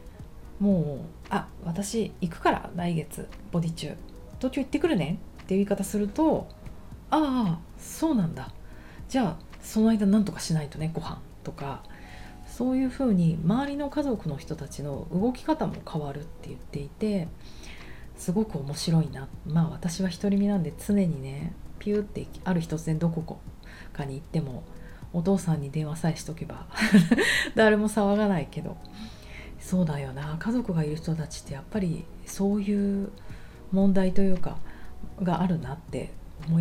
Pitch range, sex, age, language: 150-205 Hz, female, 40-59, Japanese